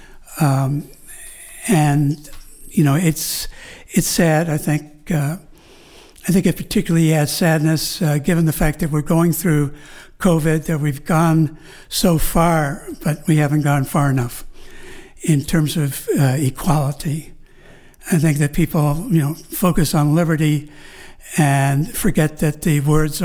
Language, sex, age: English, male, 60-79